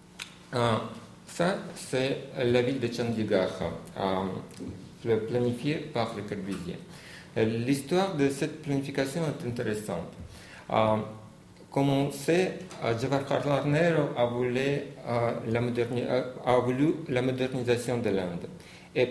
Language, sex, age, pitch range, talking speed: French, male, 50-69, 110-140 Hz, 110 wpm